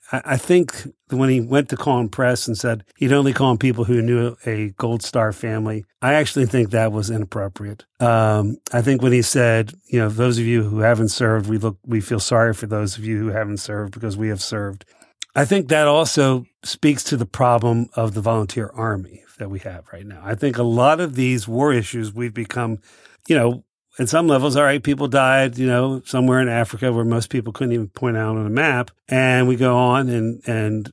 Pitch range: 110-130 Hz